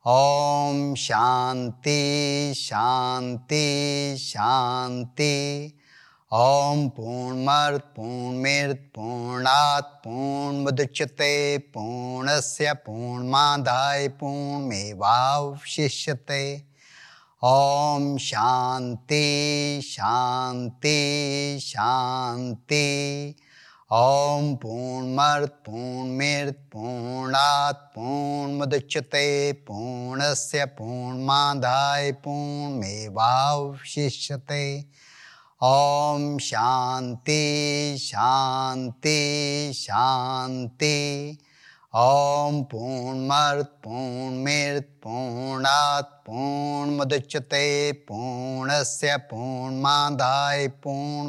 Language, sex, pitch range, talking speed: English, male, 130-145 Hz, 70 wpm